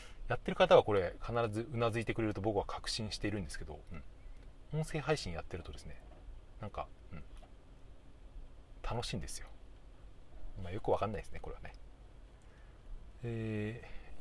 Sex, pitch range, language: male, 90-120 Hz, Japanese